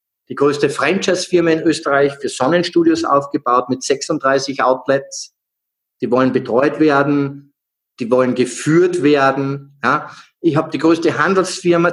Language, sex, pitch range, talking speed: German, male, 135-185 Hz, 125 wpm